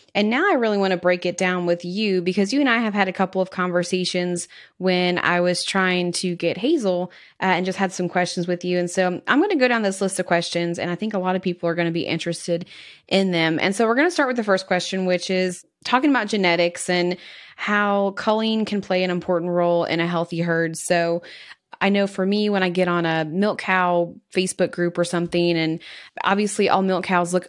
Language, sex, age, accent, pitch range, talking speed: English, female, 20-39, American, 170-195 Hz, 240 wpm